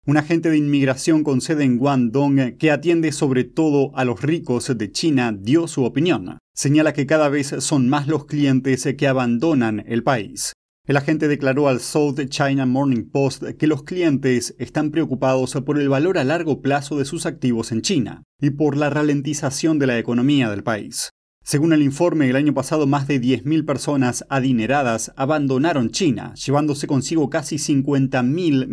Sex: male